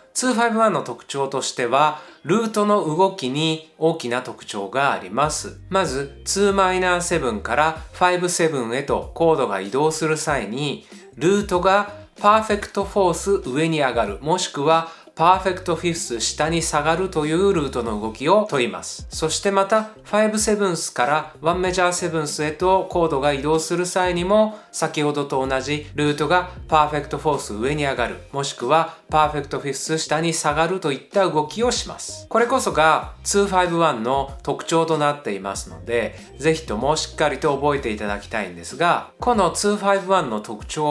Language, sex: Japanese, male